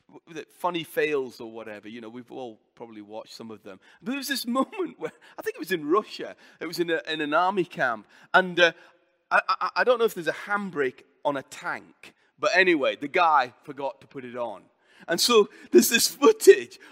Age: 30-49